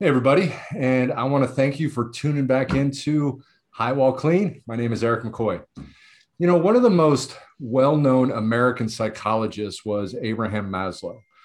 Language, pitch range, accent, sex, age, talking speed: English, 105-135 Hz, American, male, 40-59, 160 wpm